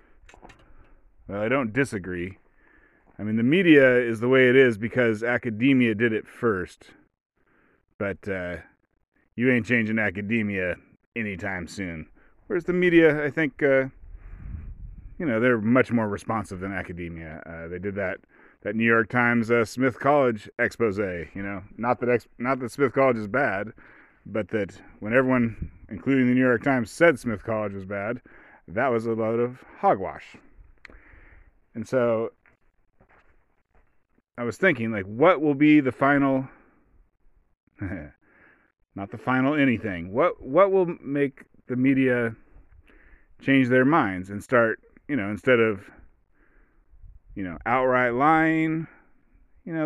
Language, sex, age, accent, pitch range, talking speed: English, male, 30-49, American, 105-135 Hz, 145 wpm